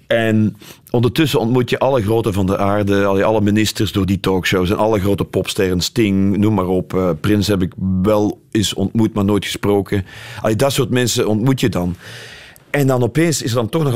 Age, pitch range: 40-59, 100-120 Hz